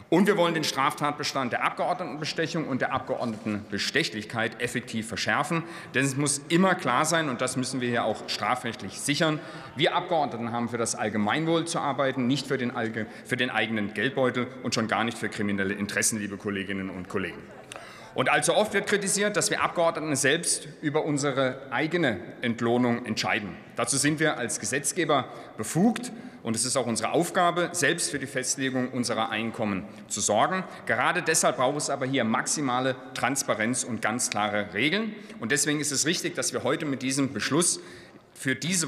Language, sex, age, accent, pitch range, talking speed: German, male, 40-59, German, 115-155 Hz, 170 wpm